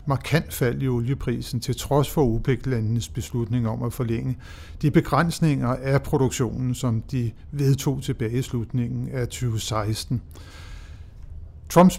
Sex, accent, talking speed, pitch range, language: male, native, 125 wpm, 115-135 Hz, Danish